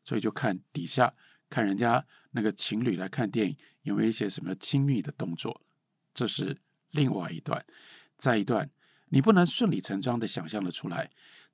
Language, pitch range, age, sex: Chinese, 120-170 Hz, 50-69, male